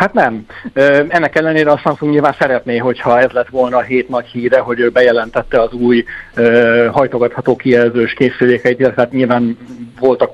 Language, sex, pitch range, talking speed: Hungarian, male, 115-130 Hz, 165 wpm